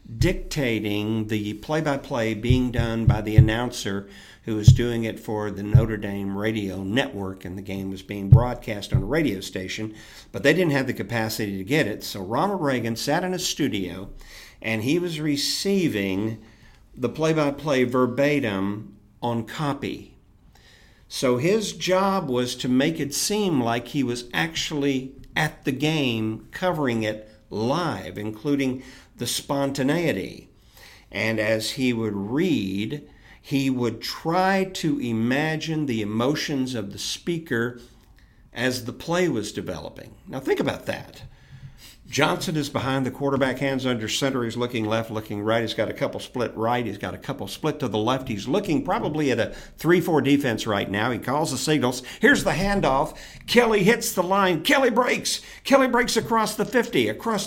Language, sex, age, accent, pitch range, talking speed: English, male, 50-69, American, 110-160 Hz, 160 wpm